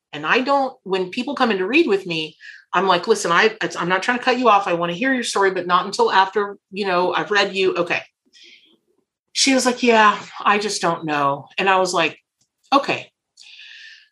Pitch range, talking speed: 160-235 Hz, 215 wpm